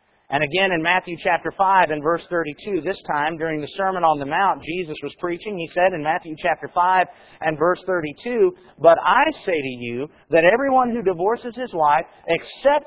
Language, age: English, 50-69